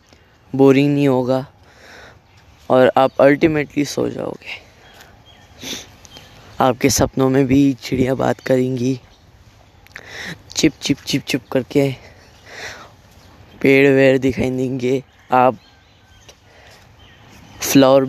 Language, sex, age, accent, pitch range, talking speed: English, female, 20-39, Indian, 110-140 Hz, 85 wpm